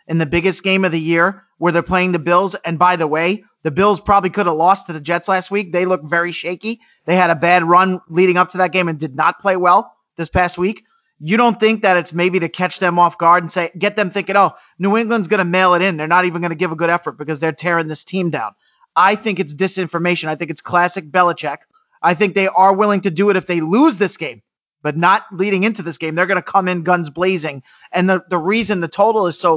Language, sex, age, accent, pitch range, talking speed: English, male, 30-49, American, 170-195 Hz, 265 wpm